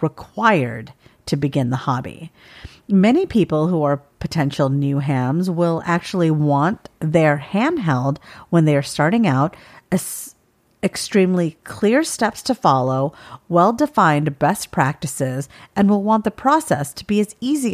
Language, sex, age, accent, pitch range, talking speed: English, female, 50-69, American, 140-190 Hz, 140 wpm